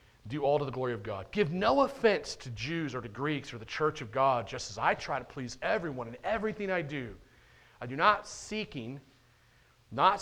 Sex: male